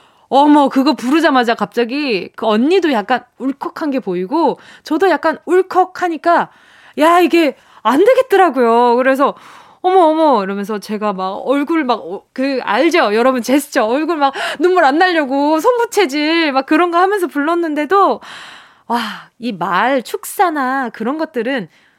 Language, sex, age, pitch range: Korean, female, 20-39, 230-335 Hz